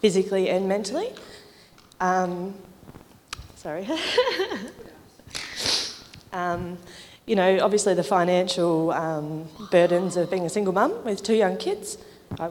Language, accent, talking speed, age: English, Australian, 110 wpm, 20-39